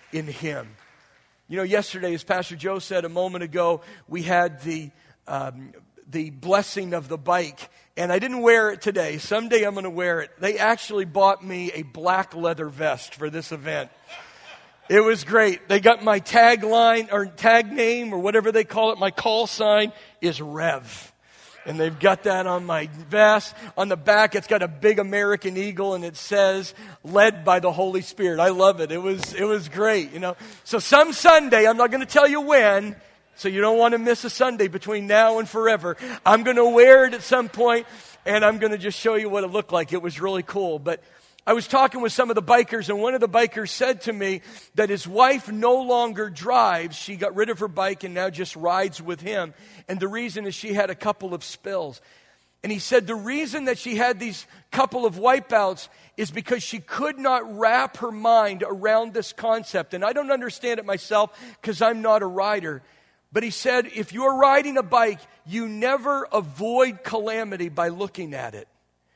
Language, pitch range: English, 180-230 Hz